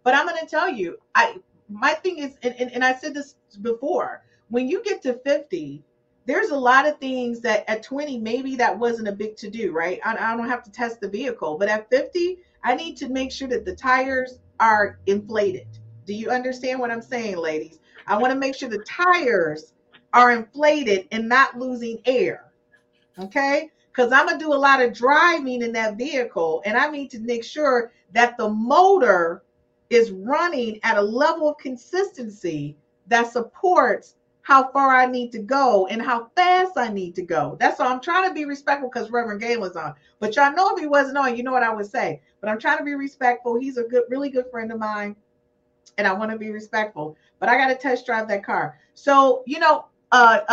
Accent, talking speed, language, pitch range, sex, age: American, 215 wpm, English, 215-280 Hz, female, 40-59